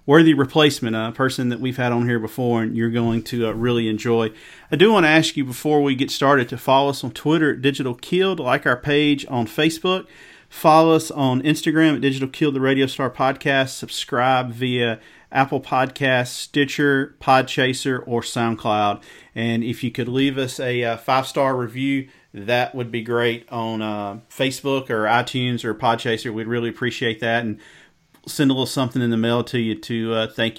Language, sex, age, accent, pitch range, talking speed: English, male, 40-59, American, 120-145 Hz, 190 wpm